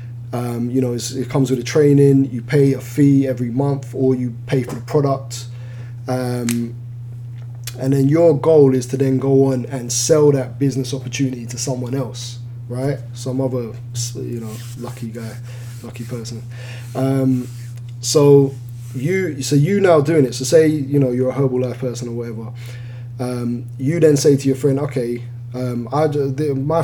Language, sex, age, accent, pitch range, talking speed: English, male, 10-29, British, 120-135 Hz, 175 wpm